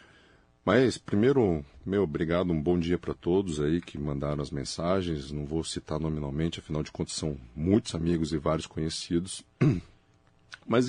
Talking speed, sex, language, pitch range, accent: 155 wpm, male, Portuguese, 80-110 Hz, Brazilian